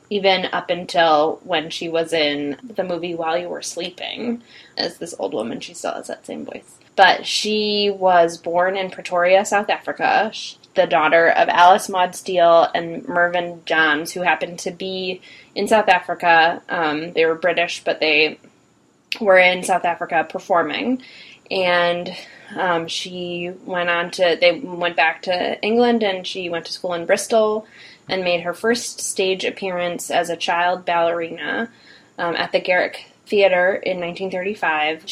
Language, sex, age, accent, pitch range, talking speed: English, female, 20-39, American, 170-195 Hz, 160 wpm